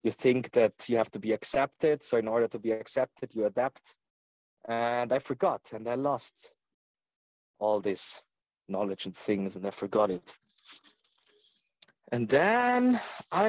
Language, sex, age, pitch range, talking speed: English, male, 40-59, 115-150 Hz, 150 wpm